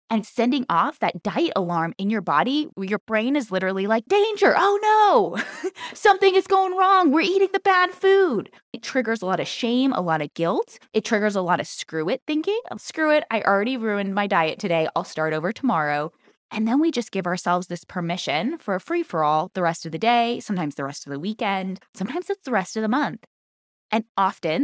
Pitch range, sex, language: 175-245 Hz, female, English